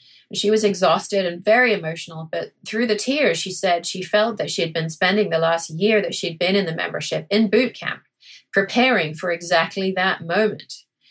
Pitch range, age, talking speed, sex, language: 170-215 Hz, 30-49, 195 wpm, female, English